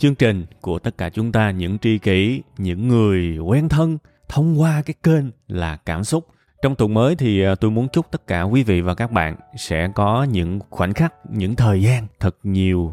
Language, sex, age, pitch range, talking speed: Vietnamese, male, 20-39, 95-125 Hz, 210 wpm